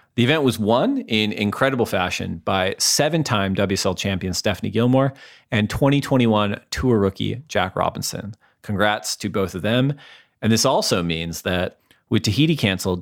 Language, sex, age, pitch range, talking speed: English, male, 40-59, 95-120 Hz, 150 wpm